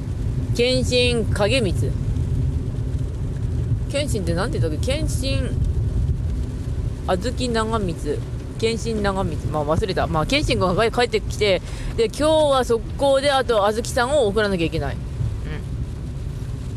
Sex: female